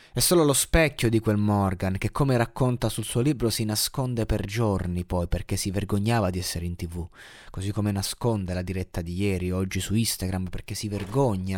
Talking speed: 200 wpm